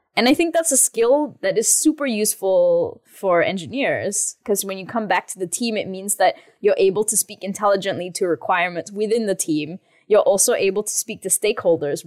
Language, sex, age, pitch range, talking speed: English, female, 10-29, 180-225 Hz, 200 wpm